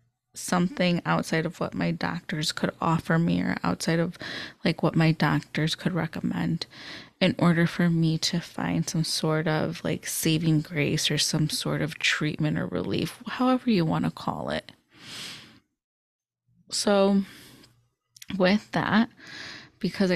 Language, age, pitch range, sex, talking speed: English, 20-39, 150-195 Hz, female, 140 wpm